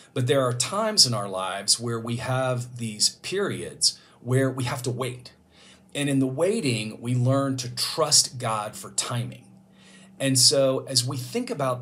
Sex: male